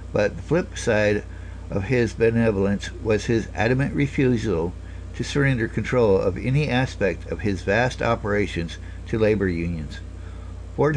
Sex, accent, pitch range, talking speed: male, American, 90-125 Hz, 135 wpm